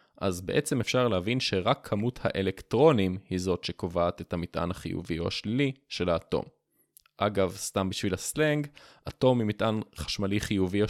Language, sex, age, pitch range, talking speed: Hebrew, male, 20-39, 95-120 Hz, 150 wpm